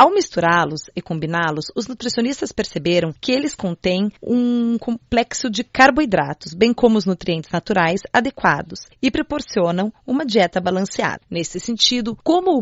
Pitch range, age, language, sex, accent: 175-235 Hz, 30-49, Chinese, female, Brazilian